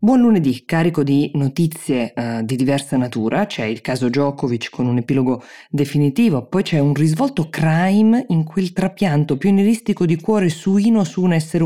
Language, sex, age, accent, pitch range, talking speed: Italian, female, 20-39, native, 125-175 Hz, 170 wpm